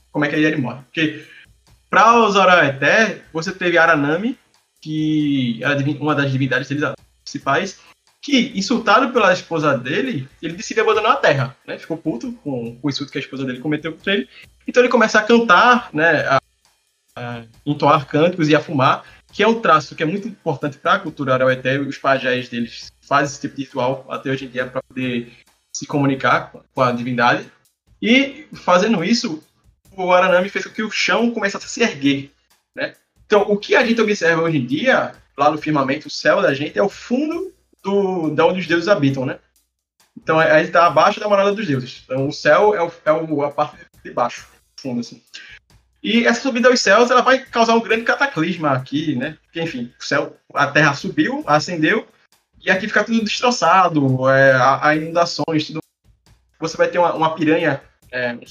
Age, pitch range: 20-39, 140-205 Hz